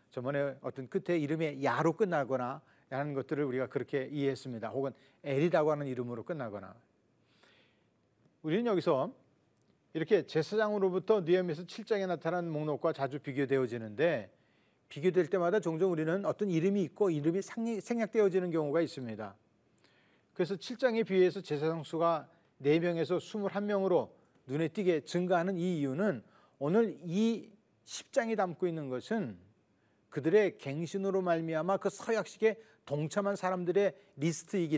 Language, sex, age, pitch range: Korean, male, 40-59, 140-195 Hz